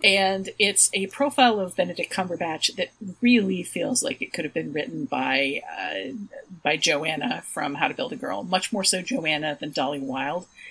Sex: female